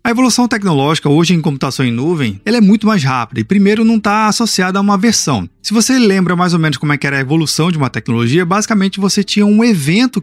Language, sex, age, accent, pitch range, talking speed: Portuguese, male, 20-39, Brazilian, 150-210 Hz, 240 wpm